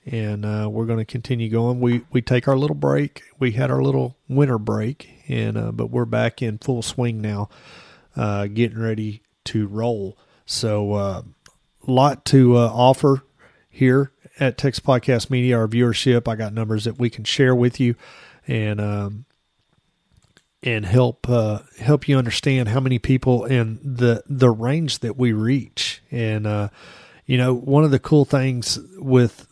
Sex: male